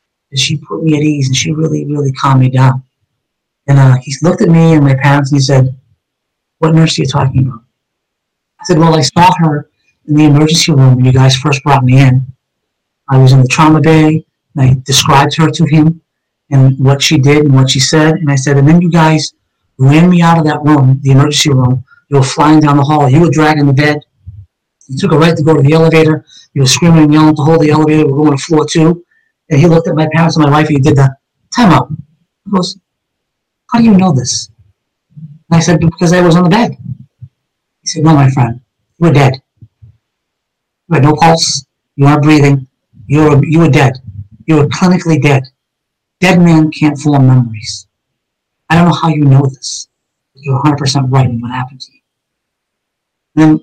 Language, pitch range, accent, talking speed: English, 135-160 Hz, American, 215 wpm